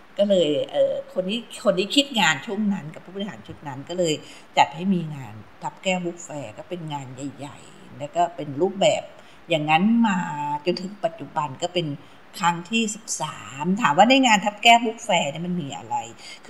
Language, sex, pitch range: Thai, female, 155-205 Hz